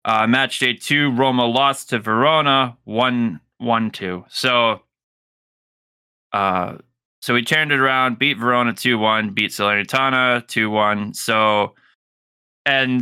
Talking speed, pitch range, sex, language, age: 130 wpm, 110-130 Hz, male, English, 20-39